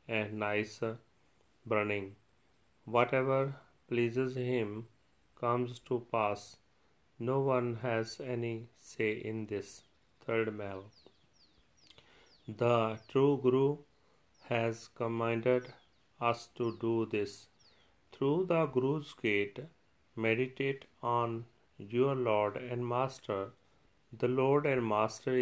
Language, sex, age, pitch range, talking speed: Punjabi, male, 40-59, 110-125 Hz, 95 wpm